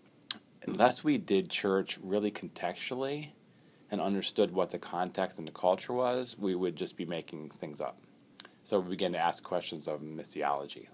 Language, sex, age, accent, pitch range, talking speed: English, male, 30-49, American, 85-100 Hz, 165 wpm